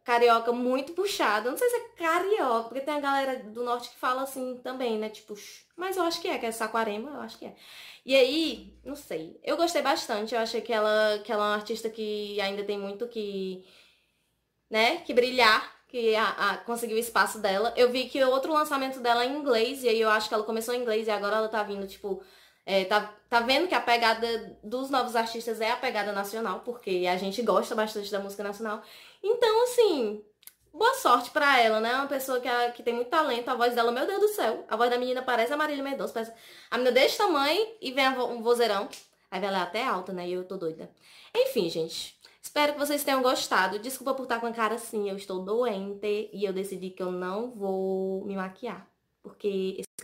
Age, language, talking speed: 20-39, English, 225 wpm